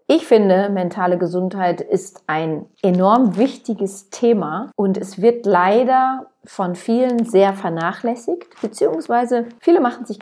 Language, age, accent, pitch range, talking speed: German, 40-59, German, 175-230 Hz, 125 wpm